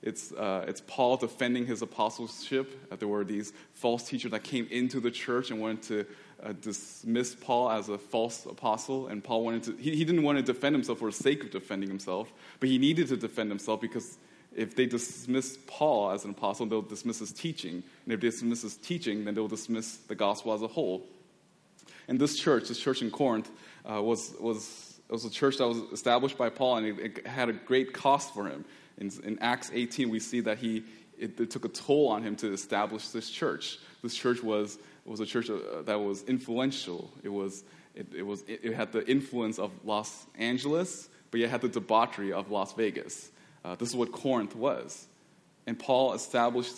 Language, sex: English, male